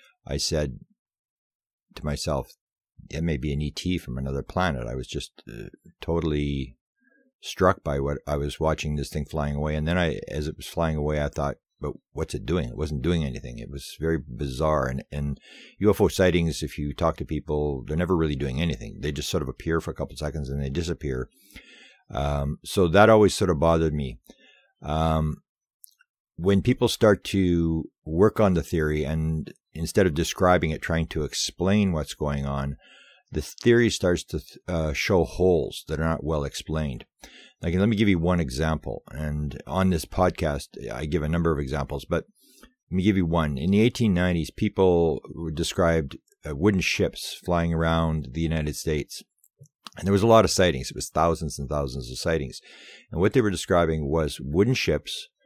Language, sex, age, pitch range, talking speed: English, male, 50-69, 75-90 Hz, 190 wpm